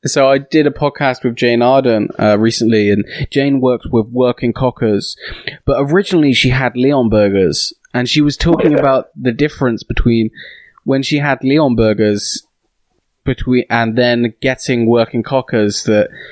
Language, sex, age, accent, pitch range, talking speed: English, male, 20-39, British, 115-140 Hz, 155 wpm